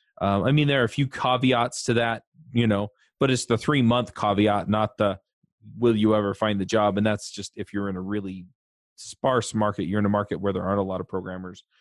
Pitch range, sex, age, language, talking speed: 100-120 Hz, male, 30-49, English, 240 wpm